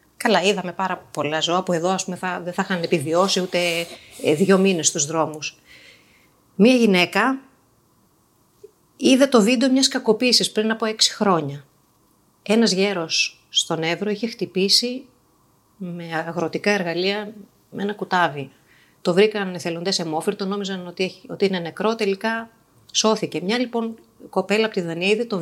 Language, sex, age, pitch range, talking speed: Greek, female, 30-49, 170-225 Hz, 145 wpm